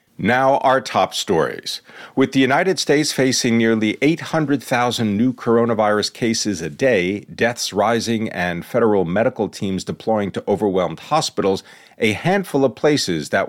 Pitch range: 95-130 Hz